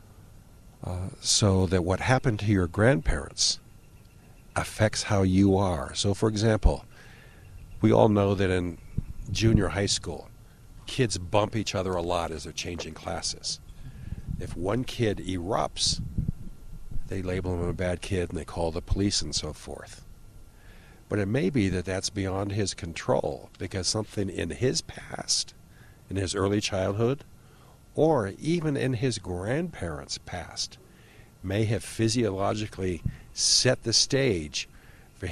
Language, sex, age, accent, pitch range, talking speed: English, male, 50-69, American, 90-115 Hz, 140 wpm